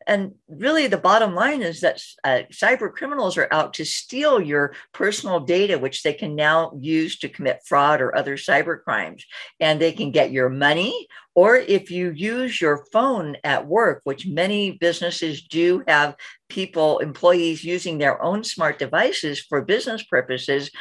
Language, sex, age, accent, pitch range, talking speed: English, female, 50-69, American, 150-195 Hz, 165 wpm